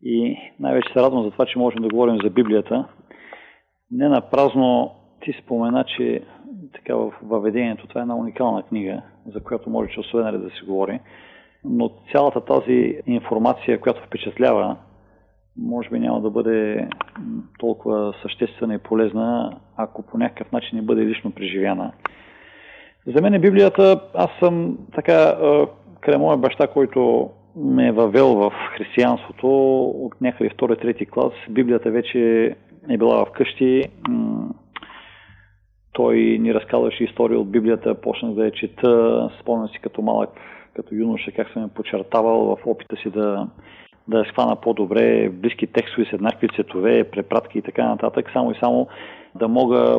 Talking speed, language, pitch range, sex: 145 wpm, Bulgarian, 105-125 Hz, male